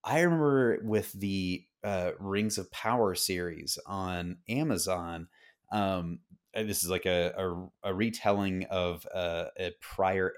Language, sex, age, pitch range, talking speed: English, male, 30-49, 90-110 Hz, 135 wpm